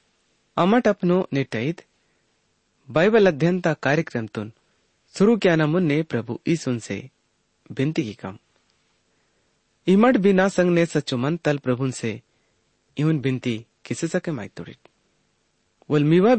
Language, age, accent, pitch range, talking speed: English, 30-49, Indian, 115-170 Hz, 90 wpm